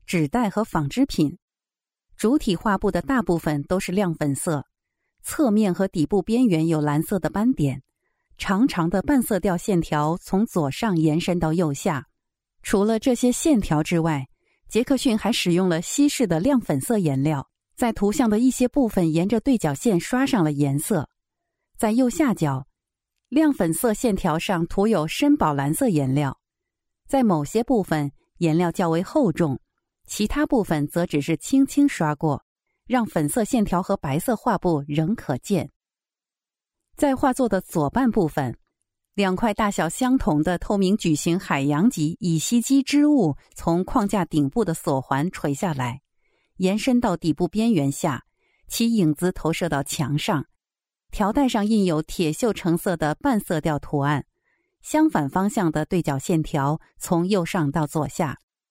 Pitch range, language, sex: 155-230 Hz, English, female